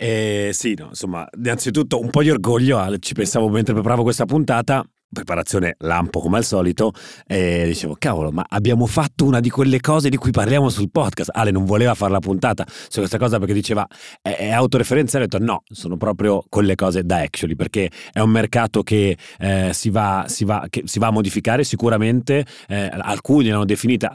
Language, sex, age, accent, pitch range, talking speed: Italian, male, 30-49, native, 90-110 Hz, 200 wpm